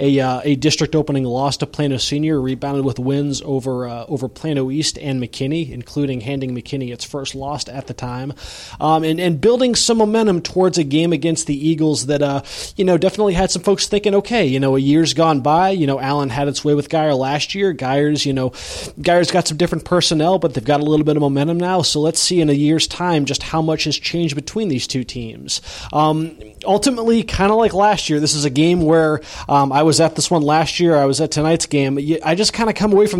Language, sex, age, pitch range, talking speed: English, male, 20-39, 140-170 Hz, 240 wpm